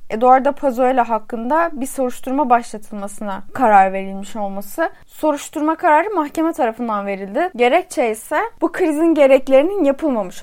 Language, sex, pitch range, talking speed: Turkish, female, 225-300 Hz, 115 wpm